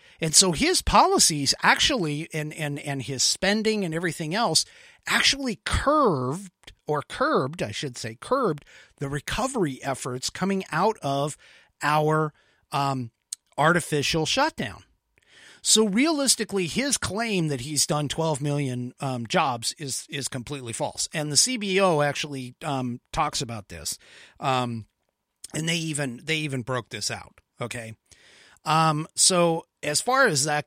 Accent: American